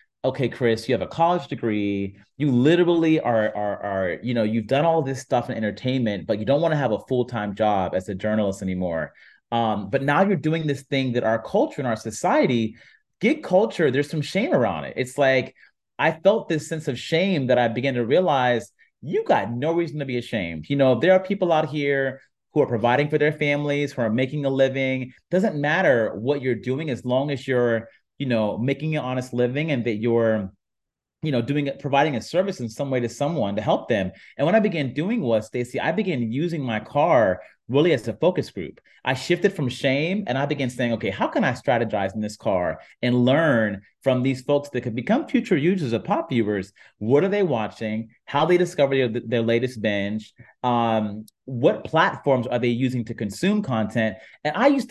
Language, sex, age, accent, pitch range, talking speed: English, male, 30-49, American, 115-155 Hz, 210 wpm